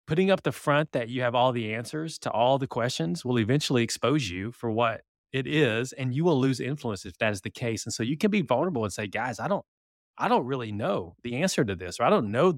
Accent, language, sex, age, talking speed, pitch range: American, English, male, 30-49, 260 wpm, 110-145 Hz